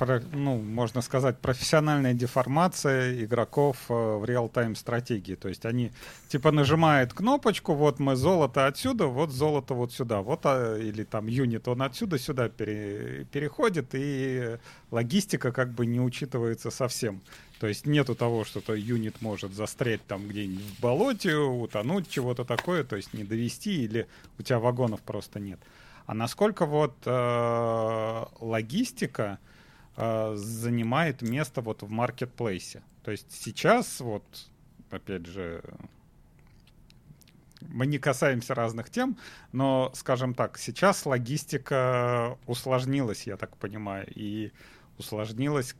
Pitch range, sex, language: 110-140 Hz, male, Russian